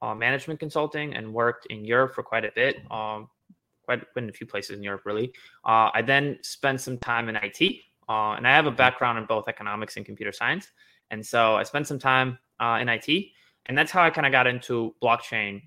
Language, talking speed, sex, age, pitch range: English, 220 wpm, male, 20-39, 110-135 Hz